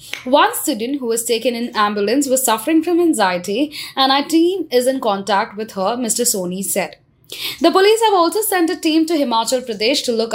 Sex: female